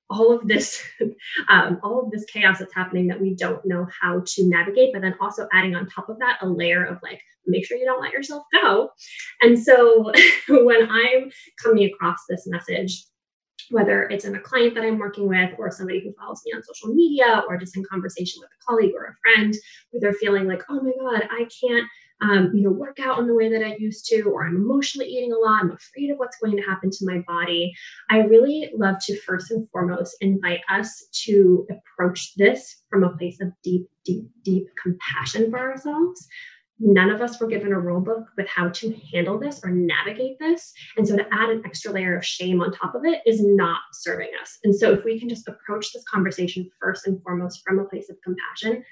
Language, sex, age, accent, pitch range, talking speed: English, female, 10-29, American, 185-235 Hz, 220 wpm